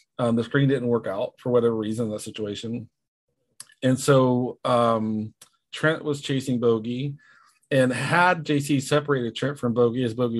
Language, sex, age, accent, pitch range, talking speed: English, male, 40-59, American, 115-135 Hz, 160 wpm